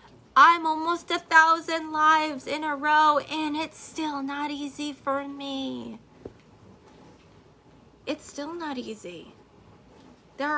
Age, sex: 30-49, female